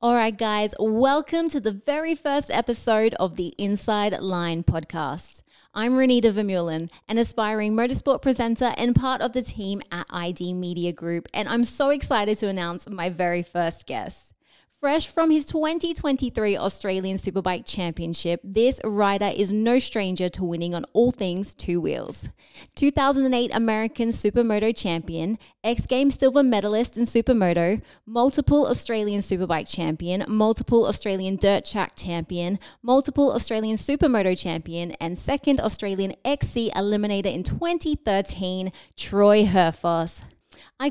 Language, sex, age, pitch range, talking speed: English, female, 20-39, 195-275 Hz, 130 wpm